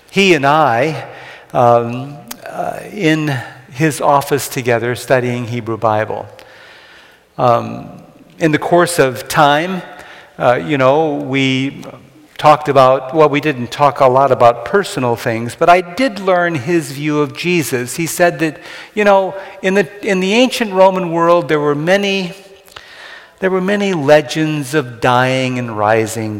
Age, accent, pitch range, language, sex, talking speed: 50-69, American, 135-175 Hz, English, male, 145 wpm